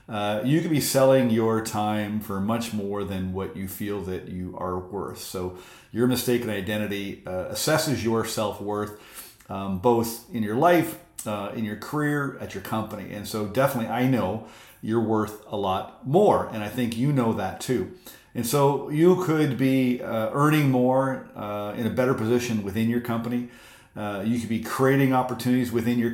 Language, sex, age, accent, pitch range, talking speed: English, male, 50-69, American, 105-125 Hz, 180 wpm